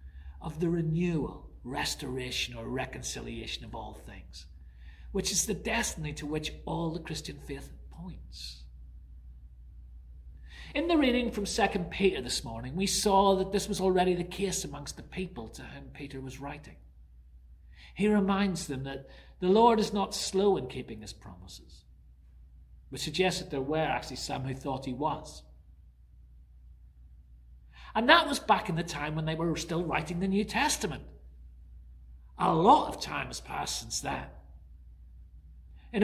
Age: 40-59